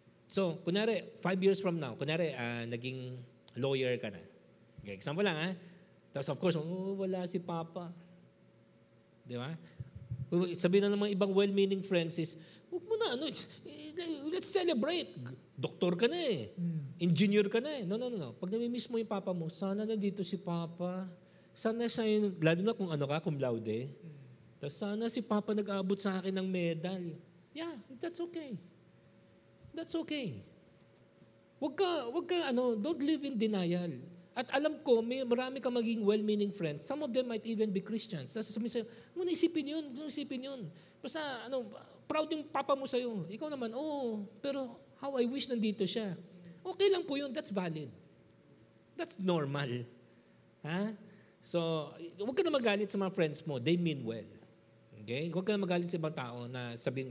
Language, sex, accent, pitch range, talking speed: Filipino, male, native, 165-245 Hz, 180 wpm